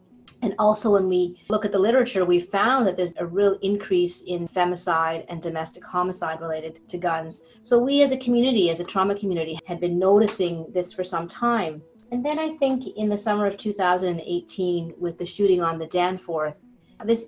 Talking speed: 190 wpm